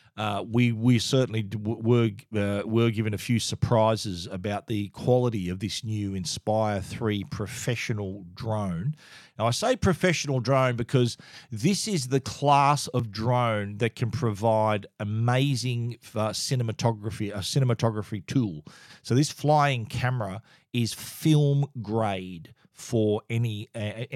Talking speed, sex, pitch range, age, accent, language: 130 wpm, male, 110-135 Hz, 40-59, Australian, English